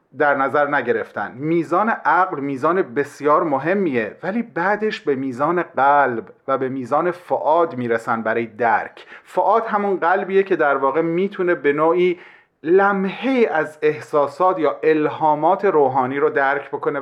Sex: male